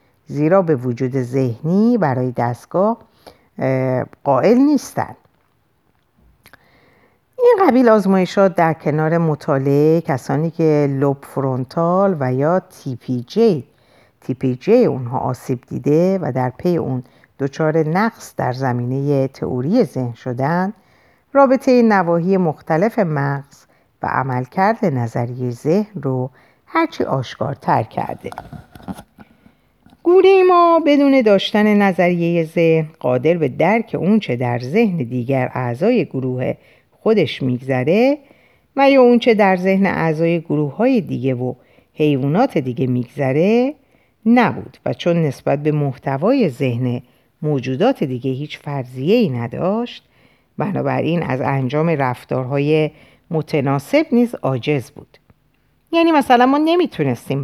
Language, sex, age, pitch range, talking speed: Persian, female, 50-69, 130-205 Hz, 110 wpm